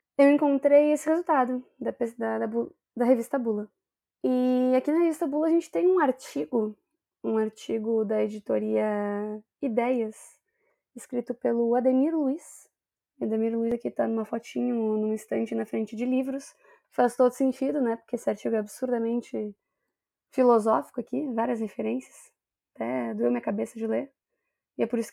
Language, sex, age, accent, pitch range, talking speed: Portuguese, female, 20-39, Brazilian, 225-320 Hz, 160 wpm